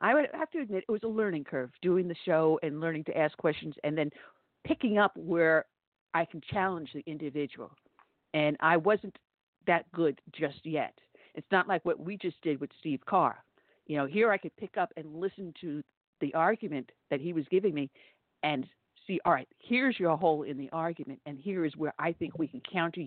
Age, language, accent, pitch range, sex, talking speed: 50-69, English, American, 155-205 Hz, female, 210 wpm